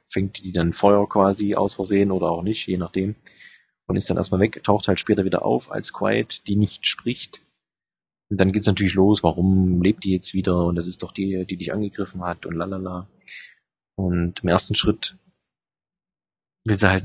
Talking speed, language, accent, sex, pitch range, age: 200 wpm, German, German, male, 90-105 Hz, 20-39